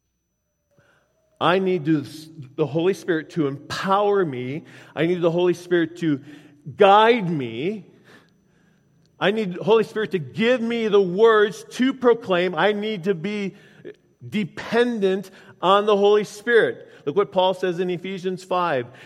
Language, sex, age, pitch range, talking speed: English, male, 50-69, 165-215 Hz, 140 wpm